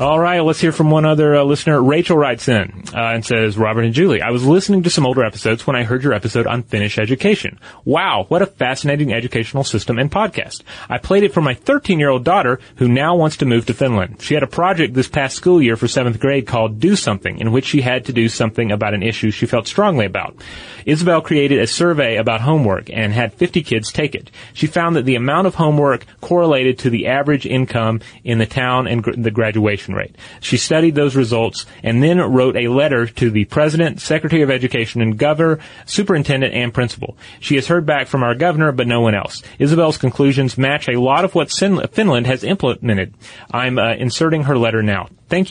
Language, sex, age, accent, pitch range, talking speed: English, male, 30-49, American, 115-155 Hz, 215 wpm